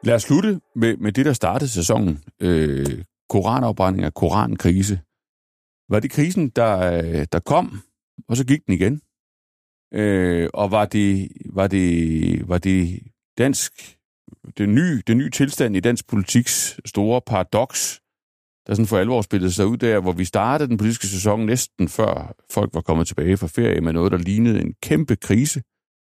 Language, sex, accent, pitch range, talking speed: Danish, male, native, 85-110 Hz, 165 wpm